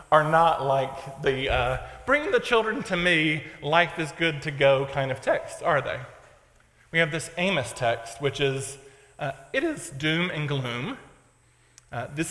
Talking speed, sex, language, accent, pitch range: 170 wpm, male, English, American, 135-175 Hz